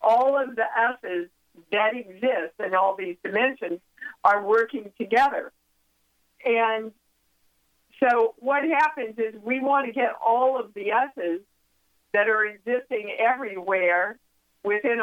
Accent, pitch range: American, 195-245 Hz